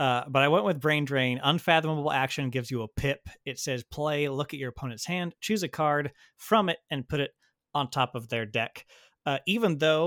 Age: 30-49